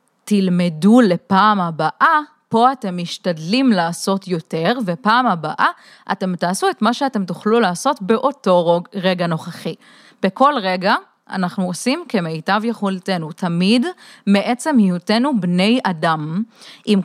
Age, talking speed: 30-49, 115 wpm